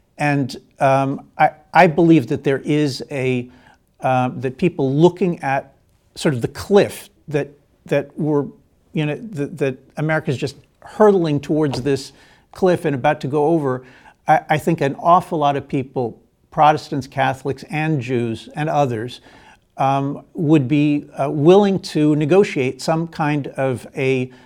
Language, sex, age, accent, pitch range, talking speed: English, male, 50-69, American, 135-160 Hz, 150 wpm